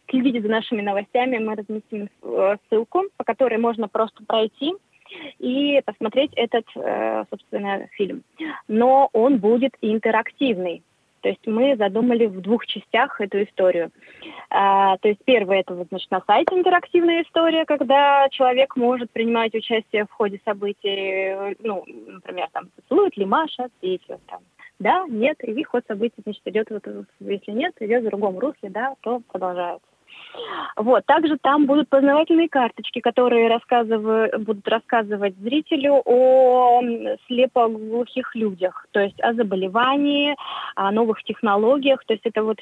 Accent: native